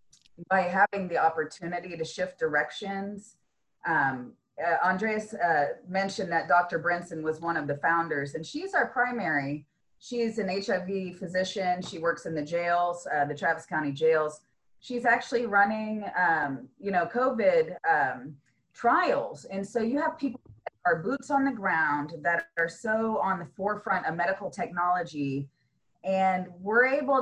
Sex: female